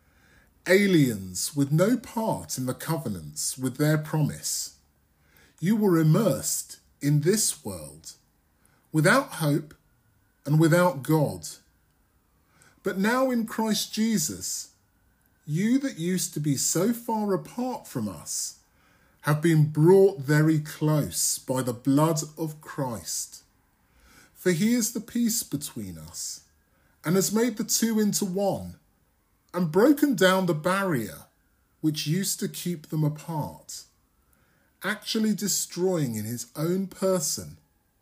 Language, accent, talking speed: English, British, 120 wpm